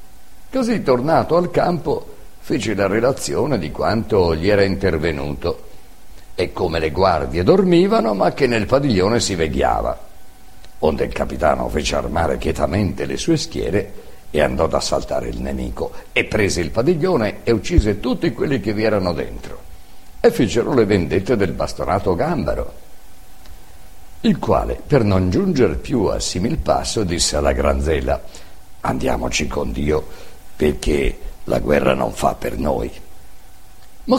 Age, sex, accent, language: 50-69, male, native, Italian